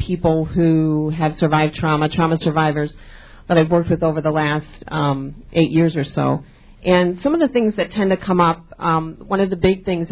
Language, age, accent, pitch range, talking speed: English, 40-59, American, 160-190 Hz, 210 wpm